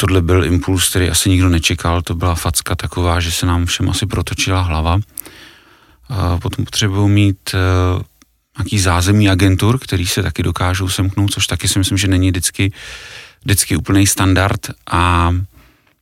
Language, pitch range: Slovak, 90-100 Hz